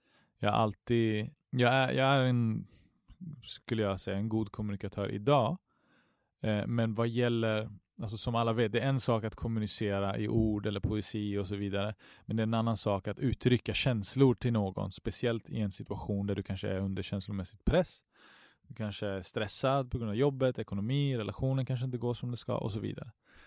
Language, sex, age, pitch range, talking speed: Swedish, male, 30-49, 100-120 Hz, 190 wpm